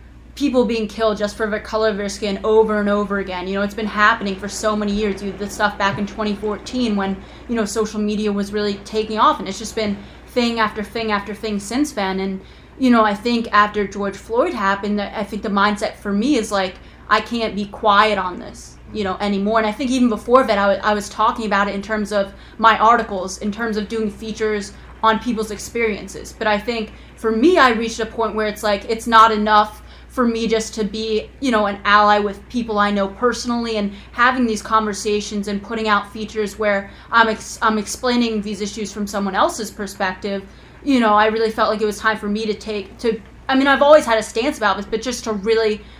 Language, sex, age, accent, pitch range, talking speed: English, female, 20-39, American, 205-225 Hz, 230 wpm